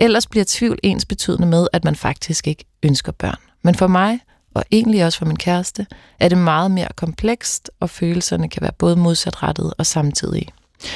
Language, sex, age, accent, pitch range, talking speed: Danish, female, 30-49, native, 165-200 Hz, 185 wpm